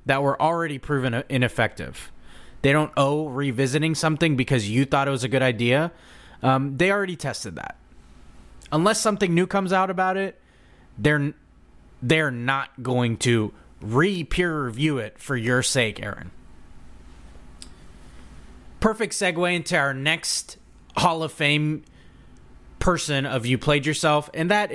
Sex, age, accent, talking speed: male, 20-39, American, 135 wpm